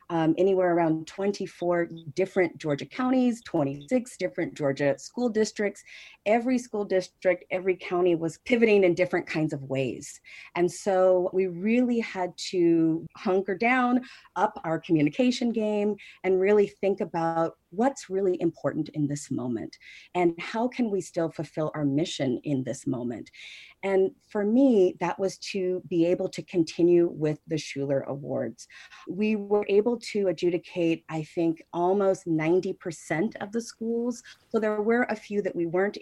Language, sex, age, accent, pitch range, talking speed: English, female, 40-59, American, 160-205 Hz, 150 wpm